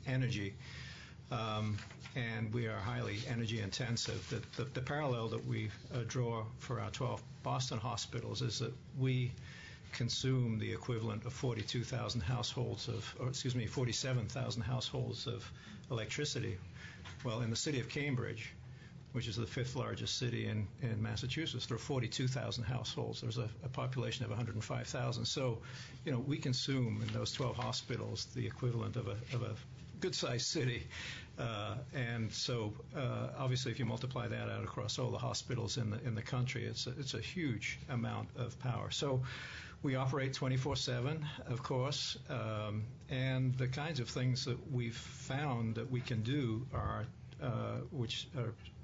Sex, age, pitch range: male, 50-69, 115-130 Hz